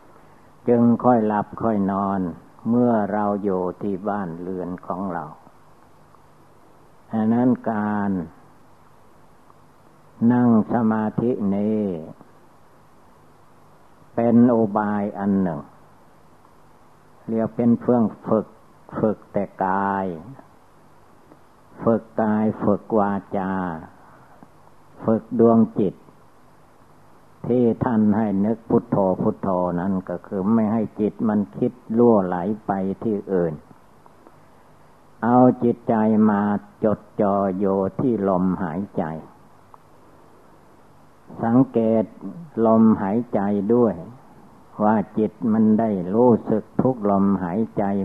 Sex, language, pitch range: male, Thai, 95-115 Hz